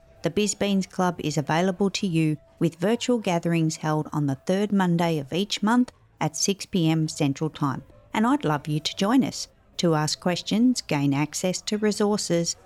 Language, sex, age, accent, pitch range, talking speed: English, female, 40-59, Australian, 145-190 Hz, 170 wpm